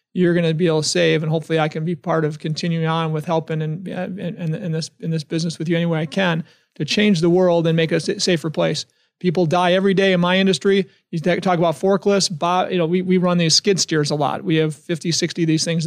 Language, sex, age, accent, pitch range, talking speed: English, male, 30-49, American, 160-180 Hz, 255 wpm